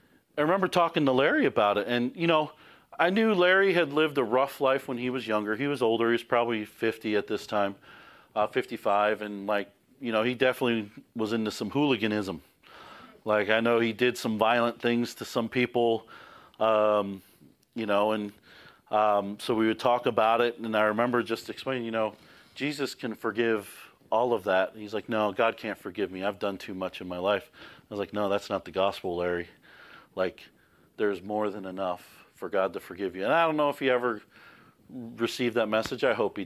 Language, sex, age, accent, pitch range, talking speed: English, male, 40-59, American, 105-120 Hz, 205 wpm